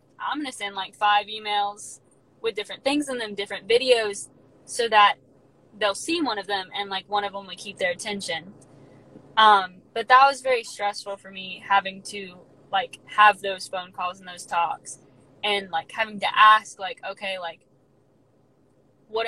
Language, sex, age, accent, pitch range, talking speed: English, female, 10-29, American, 185-215 Hz, 175 wpm